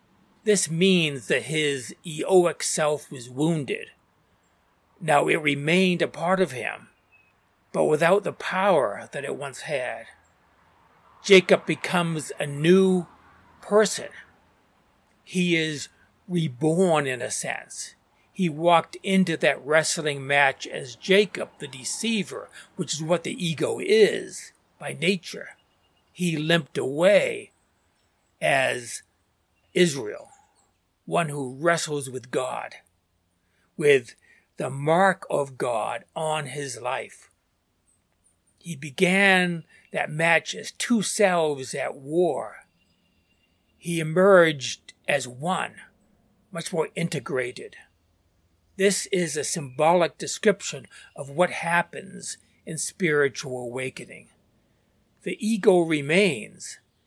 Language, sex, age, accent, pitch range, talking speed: English, male, 60-79, American, 140-185 Hz, 105 wpm